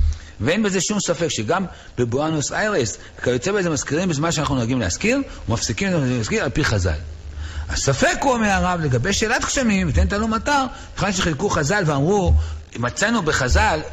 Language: Hebrew